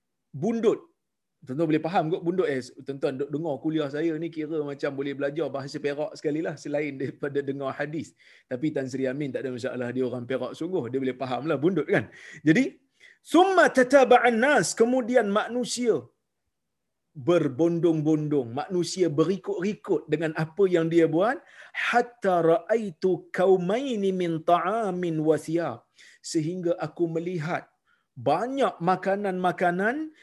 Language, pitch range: Malayalam, 155-220 Hz